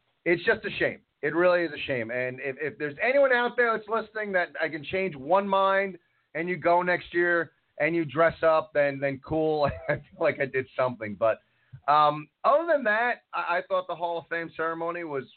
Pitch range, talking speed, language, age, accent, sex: 135-170 Hz, 220 wpm, English, 40-59, American, male